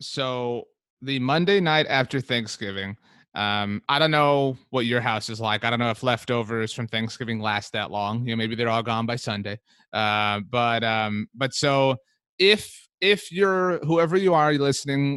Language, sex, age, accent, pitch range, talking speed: English, male, 30-49, American, 115-150 Hz, 180 wpm